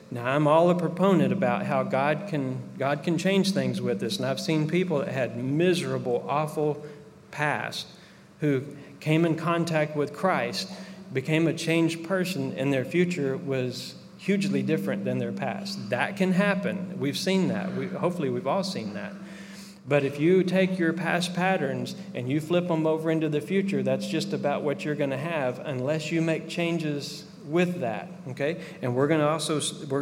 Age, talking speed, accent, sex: 40-59, 180 wpm, American, male